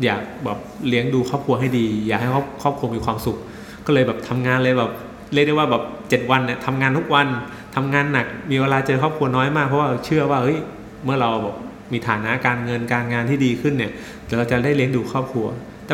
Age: 20-39